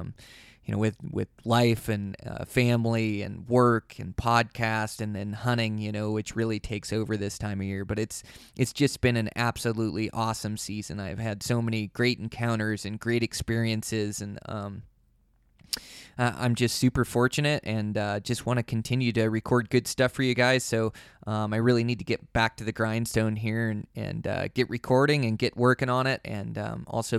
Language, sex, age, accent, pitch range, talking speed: English, male, 20-39, American, 110-125 Hz, 195 wpm